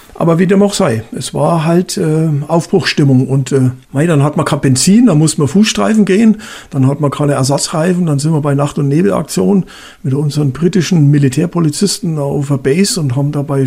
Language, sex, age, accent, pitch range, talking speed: German, male, 60-79, German, 145-185 Hz, 195 wpm